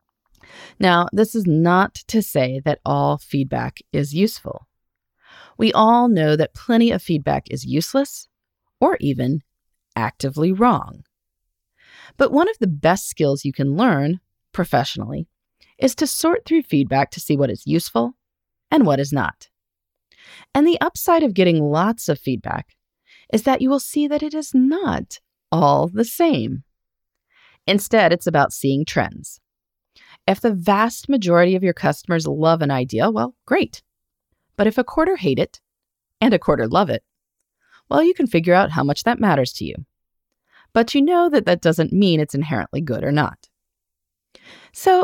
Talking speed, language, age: 160 wpm, English, 30-49